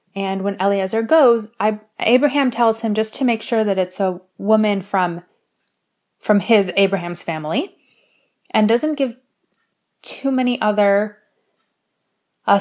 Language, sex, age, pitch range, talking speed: English, female, 20-39, 185-225 Hz, 135 wpm